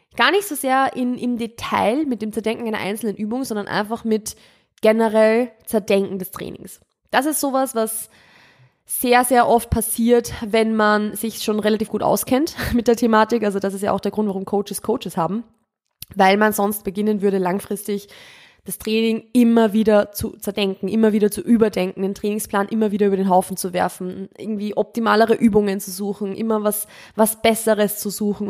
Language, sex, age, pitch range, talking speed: German, female, 20-39, 200-225 Hz, 175 wpm